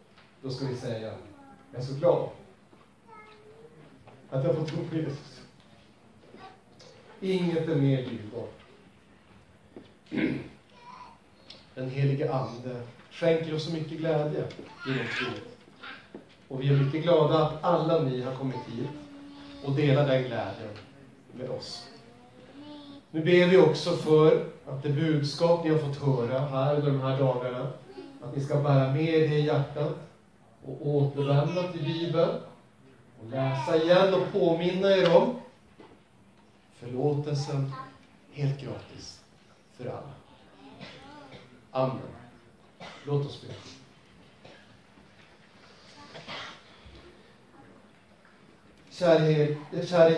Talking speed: 110 wpm